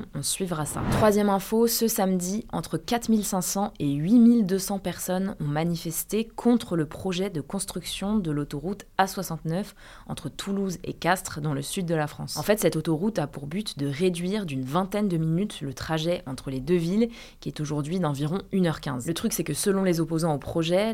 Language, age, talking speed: French, 20-39, 190 wpm